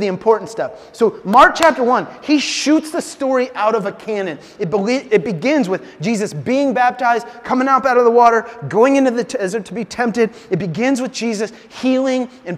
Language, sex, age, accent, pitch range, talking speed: English, male, 30-49, American, 200-245 Hz, 205 wpm